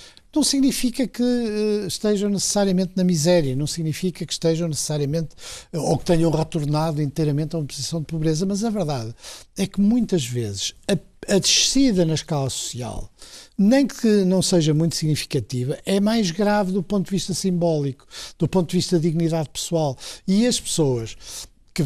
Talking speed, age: 160 wpm, 60-79